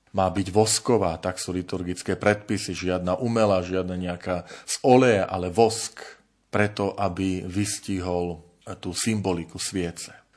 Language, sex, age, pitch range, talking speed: Slovak, male, 40-59, 95-110 Hz, 120 wpm